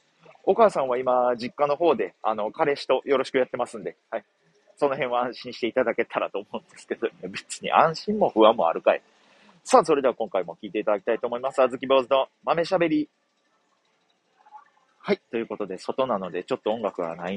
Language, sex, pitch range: Japanese, male, 115-170 Hz